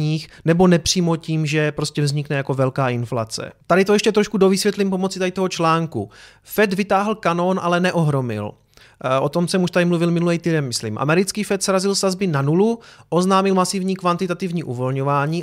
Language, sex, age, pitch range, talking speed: Czech, male, 30-49, 150-190 Hz, 165 wpm